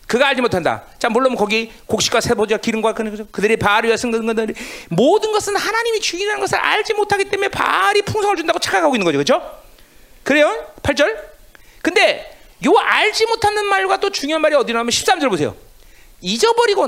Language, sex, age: Korean, male, 40-59